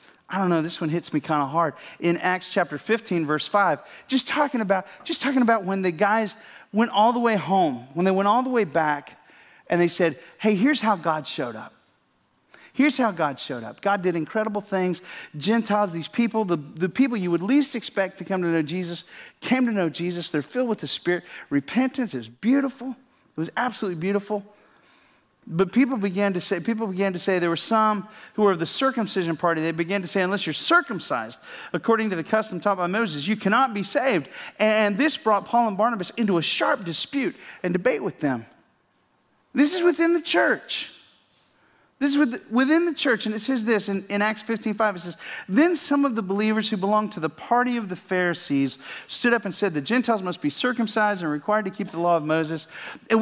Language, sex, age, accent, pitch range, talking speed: English, male, 40-59, American, 175-235 Hz, 210 wpm